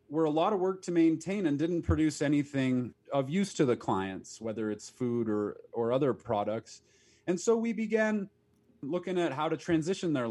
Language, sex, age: English, male, 30-49